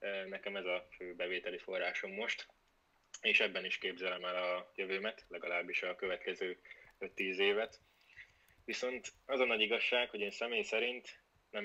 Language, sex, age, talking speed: Hungarian, male, 20-39, 150 wpm